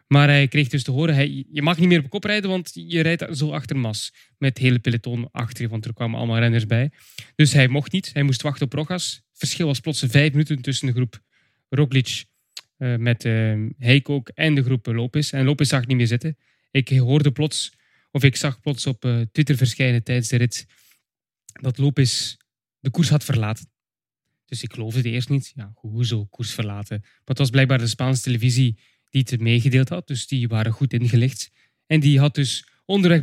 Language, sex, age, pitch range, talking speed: English, male, 20-39, 120-145 Hz, 210 wpm